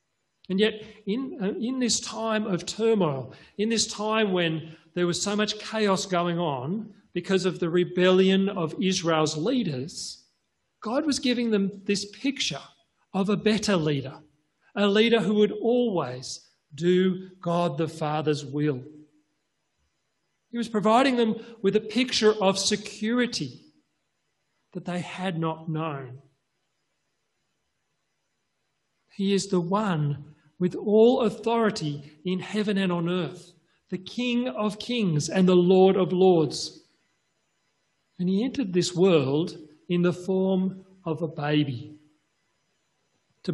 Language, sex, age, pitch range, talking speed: English, male, 40-59, 160-210 Hz, 130 wpm